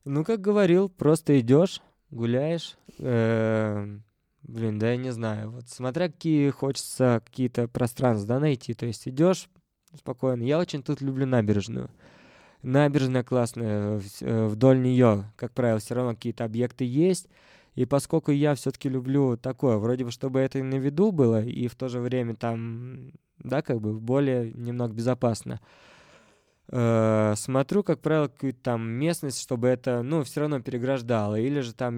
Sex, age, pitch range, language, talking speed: male, 20-39, 120-145 Hz, Russian, 150 wpm